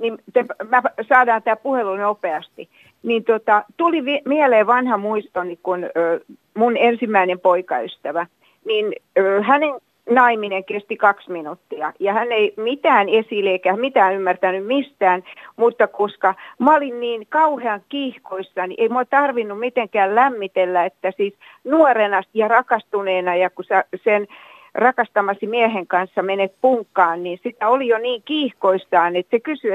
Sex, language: female, Finnish